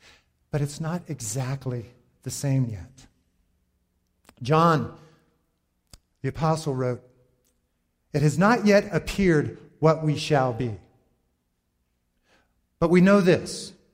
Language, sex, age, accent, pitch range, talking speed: English, male, 50-69, American, 130-175 Hz, 105 wpm